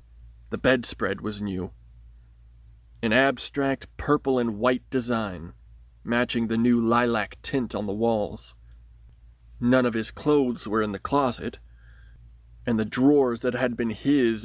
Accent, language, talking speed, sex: American, English, 135 wpm, male